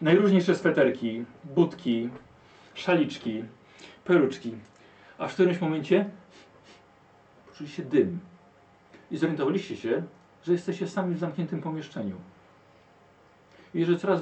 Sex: male